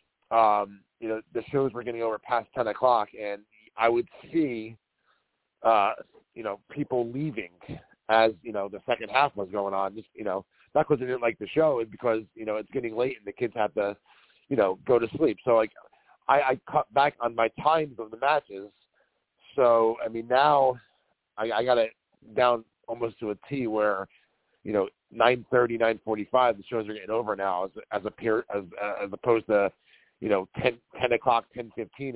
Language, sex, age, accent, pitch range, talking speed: English, male, 40-59, American, 110-135 Hz, 200 wpm